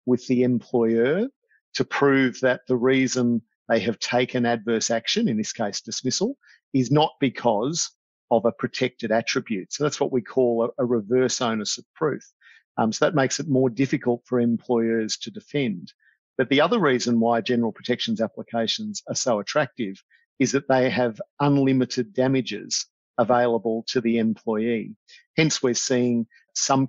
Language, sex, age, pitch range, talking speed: English, male, 50-69, 115-130 Hz, 155 wpm